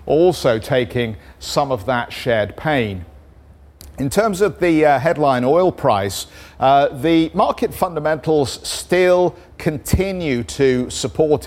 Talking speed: 120 wpm